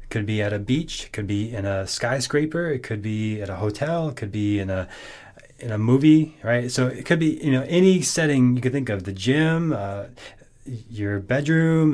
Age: 30-49